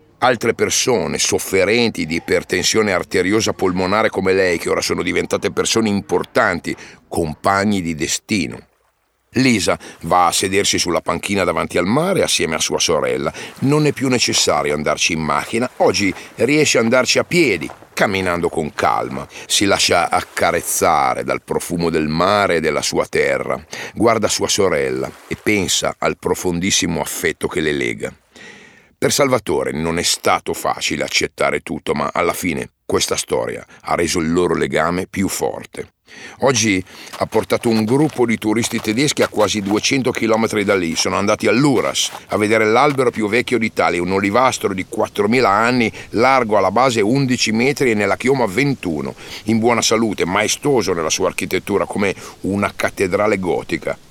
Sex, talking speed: male, 150 wpm